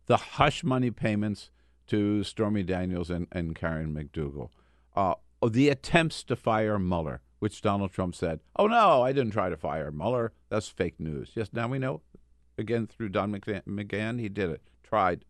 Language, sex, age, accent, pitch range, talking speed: English, male, 50-69, American, 80-115 Hz, 175 wpm